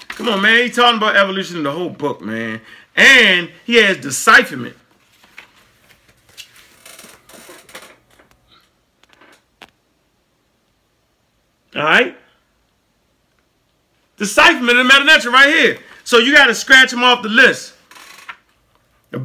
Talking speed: 100 wpm